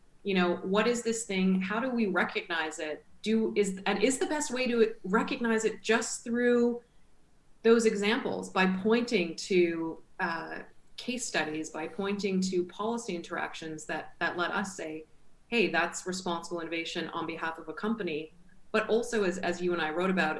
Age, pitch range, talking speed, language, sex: 30-49, 165-205 Hz, 175 wpm, English, female